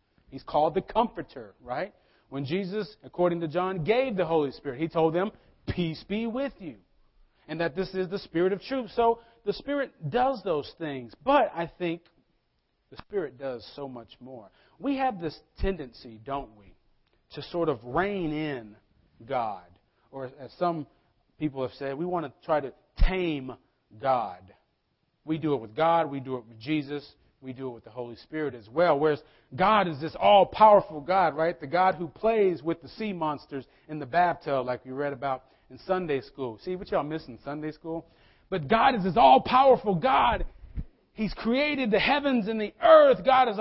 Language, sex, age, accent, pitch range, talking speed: English, male, 40-59, American, 140-205 Hz, 185 wpm